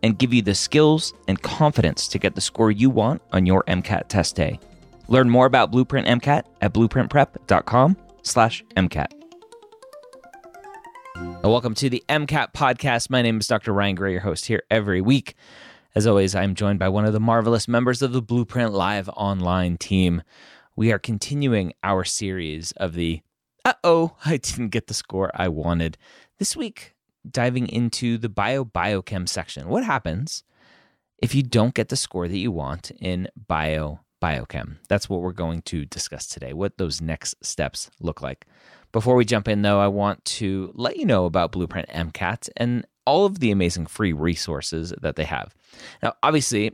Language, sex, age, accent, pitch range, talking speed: English, male, 30-49, American, 90-125 Hz, 170 wpm